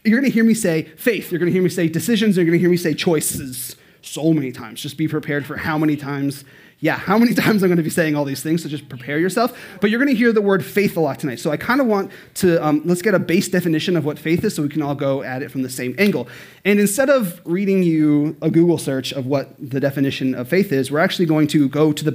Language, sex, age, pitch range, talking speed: English, male, 30-49, 145-190 Hz, 290 wpm